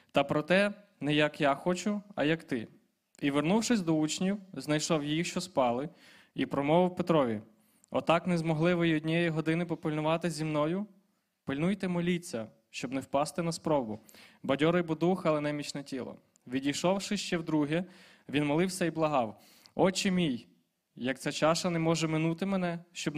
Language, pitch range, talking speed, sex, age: Ukrainian, 145-175 Hz, 155 wpm, male, 20-39